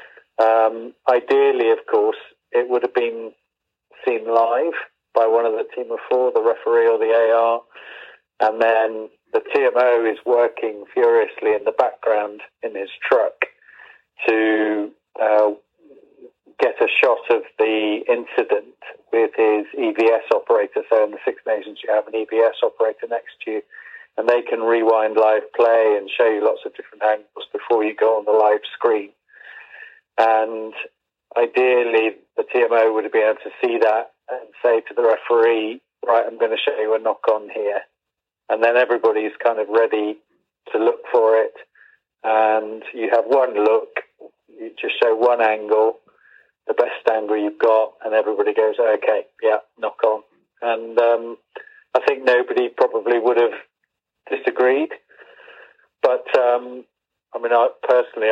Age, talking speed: 40-59, 155 wpm